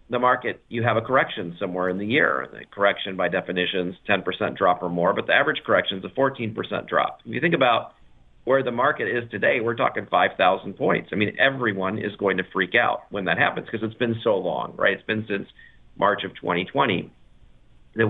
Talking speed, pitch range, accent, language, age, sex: 210 wpm, 95-115 Hz, American, English, 50-69, male